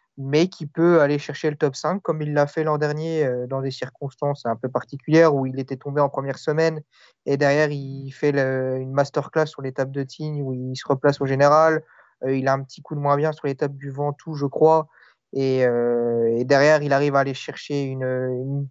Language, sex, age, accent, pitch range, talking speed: French, male, 30-49, French, 135-155 Hz, 230 wpm